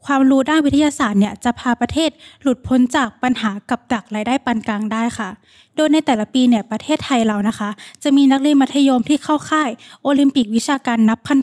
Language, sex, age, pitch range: Thai, female, 10-29, 230-285 Hz